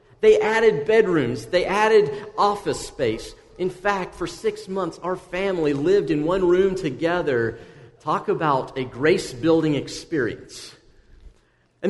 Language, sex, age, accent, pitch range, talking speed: English, male, 40-59, American, 150-220 Hz, 125 wpm